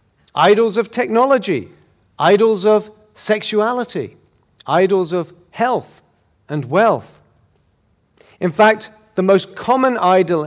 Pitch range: 135-210 Hz